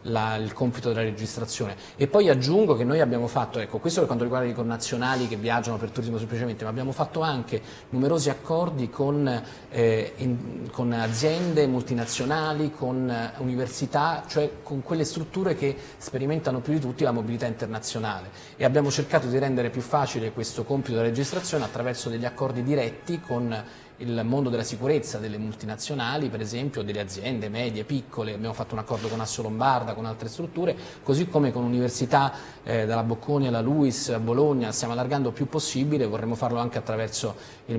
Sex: male